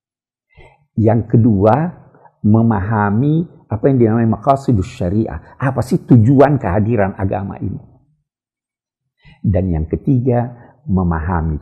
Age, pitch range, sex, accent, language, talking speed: 50-69, 95-135 Hz, male, native, Indonesian, 95 wpm